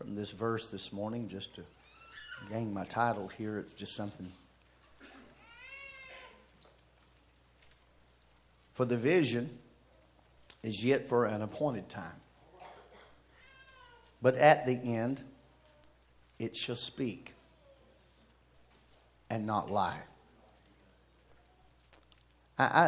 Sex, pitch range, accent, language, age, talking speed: male, 90-130 Hz, American, English, 50-69, 90 wpm